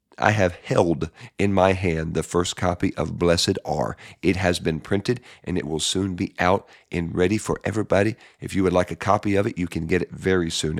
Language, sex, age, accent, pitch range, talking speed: English, male, 40-59, American, 85-105 Hz, 220 wpm